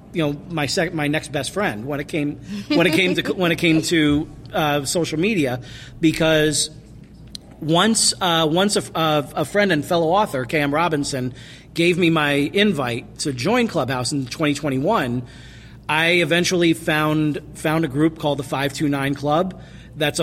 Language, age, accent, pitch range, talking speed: English, 40-59, American, 135-170 Hz, 165 wpm